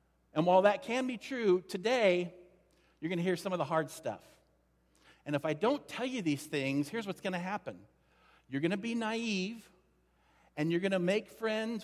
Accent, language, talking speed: American, English, 205 wpm